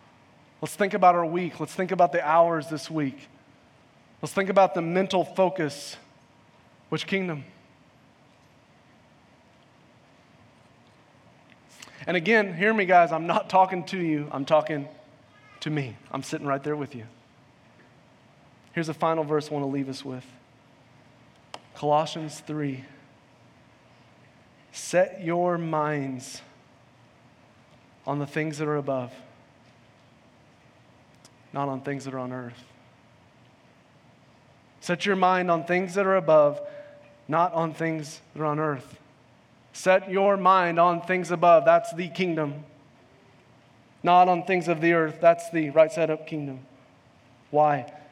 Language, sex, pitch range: English, male, 135-180 Hz